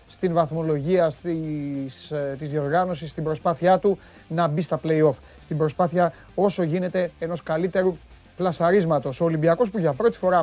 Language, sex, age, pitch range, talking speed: Greek, male, 30-49, 150-190 Hz, 145 wpm